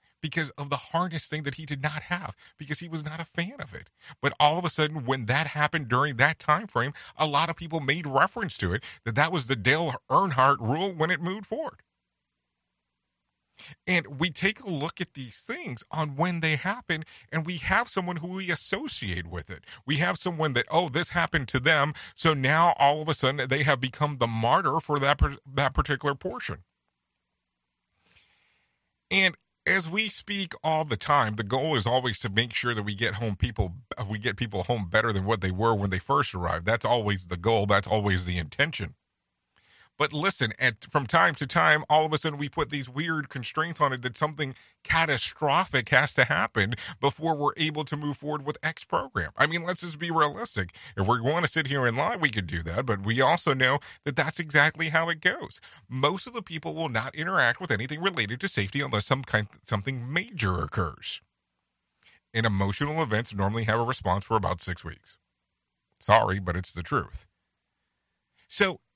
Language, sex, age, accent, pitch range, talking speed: English, male, 40-59, American, 105-160 Hz, 200 wpm